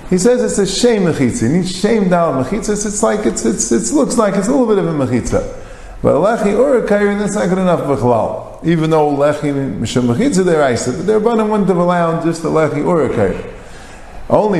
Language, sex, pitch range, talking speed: English, male, 145-200 Hz, 230 wpm